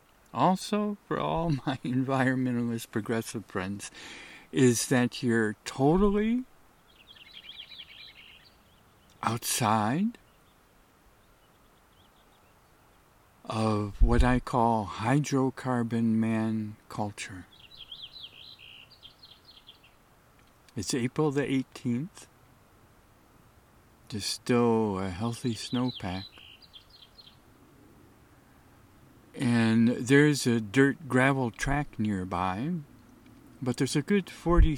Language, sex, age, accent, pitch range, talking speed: English, male, 50-69, American, 110-135 Hz, 70 wpm